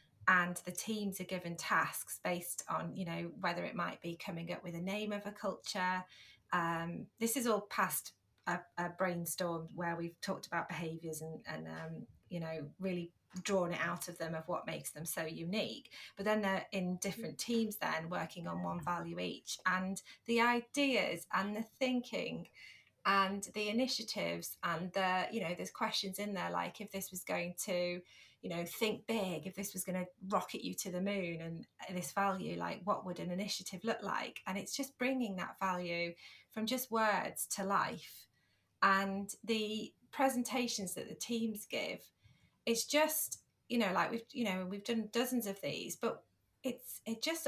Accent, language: British, English